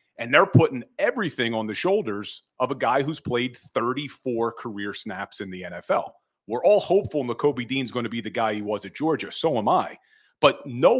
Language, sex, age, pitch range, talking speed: English, male, 30-49, 110-140 Hz, 205 wpm